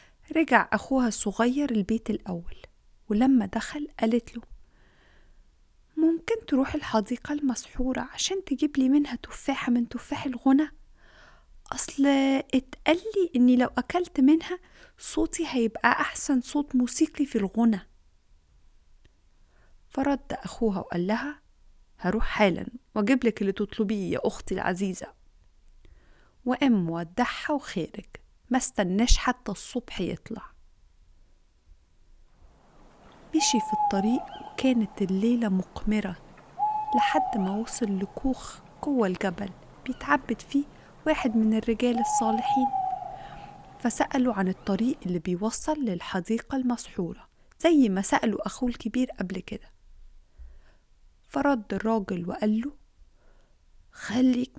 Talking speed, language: 100 wpm, Arabic